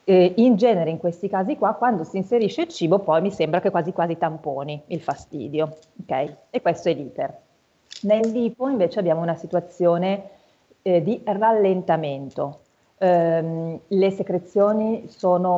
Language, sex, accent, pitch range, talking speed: Italian, female, native, 165-190 Hz, 150 wpm